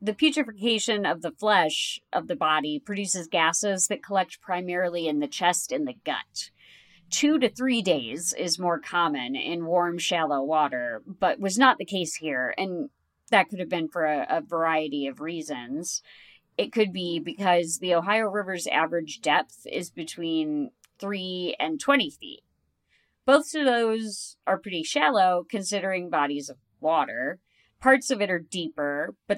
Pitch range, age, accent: 165-235 Hz, 40-59, American